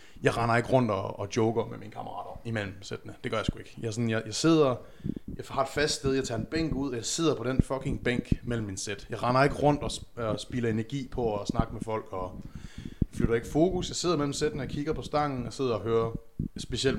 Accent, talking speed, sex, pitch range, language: native, 255 wpm, male, 110-140 Hz, Danish